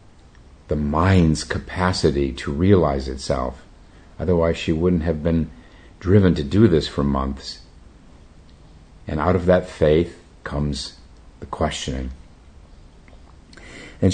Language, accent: English, American